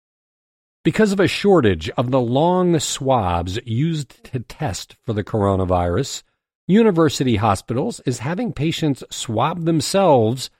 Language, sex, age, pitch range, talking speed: English, male, 50-69, 100-140 Hz, 120 wpm